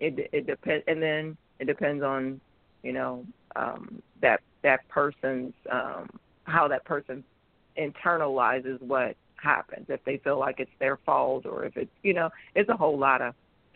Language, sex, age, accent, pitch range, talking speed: English, female, 40-59, American, 140-175 Hz, 175 wpm